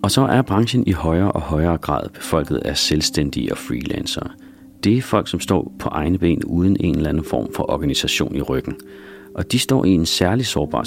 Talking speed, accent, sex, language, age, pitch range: 210 wpm, native, male, Danish, 40-59, 75-95 Hz